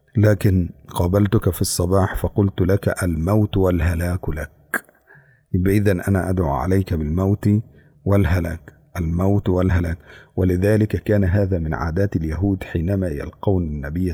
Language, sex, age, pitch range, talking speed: Indonesian, male, 50-69, 85-100 Hz, 110 wpm